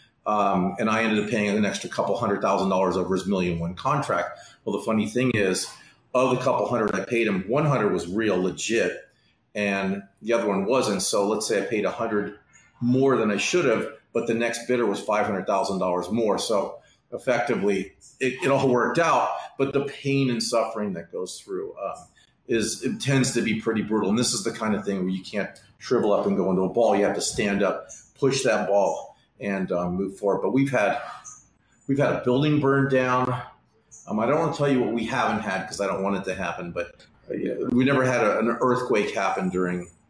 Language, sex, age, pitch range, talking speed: English, male, 40-59, 95-125 Hz, 225 wpm